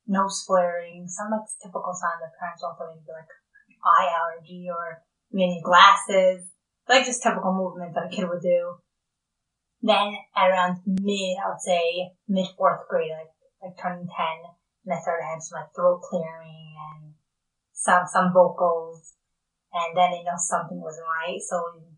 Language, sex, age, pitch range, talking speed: English, female, 20-39, 170-205 Hz, 160 wpm